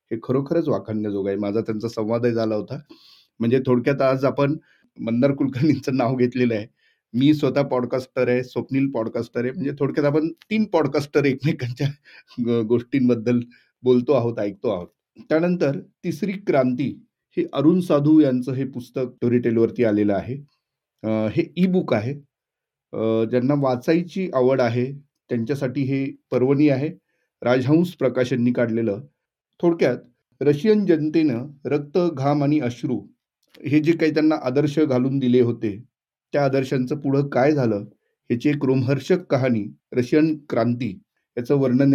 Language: Marathi